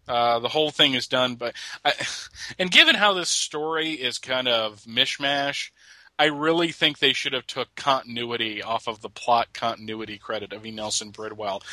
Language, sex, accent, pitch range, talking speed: English, male, American, 120-150 Hz, 175 wpm